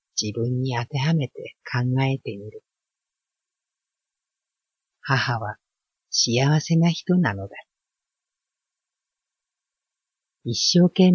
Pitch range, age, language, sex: 115-155 Hz, 50-69, Japanese, female